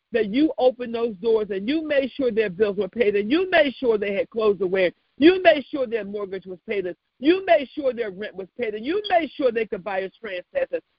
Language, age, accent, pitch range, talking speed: English, 50-69, American, 215-275 Hz, 250 wpm